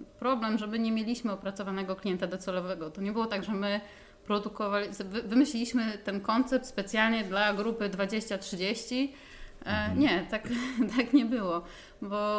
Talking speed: 125 wpm